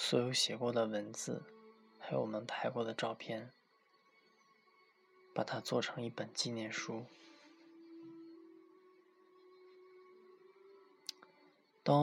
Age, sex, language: 20-39, male, Chinese